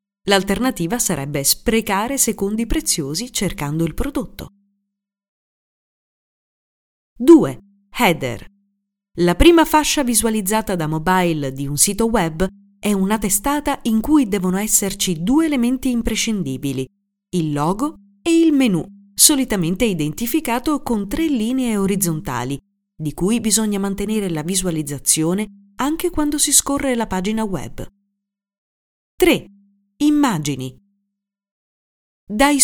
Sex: female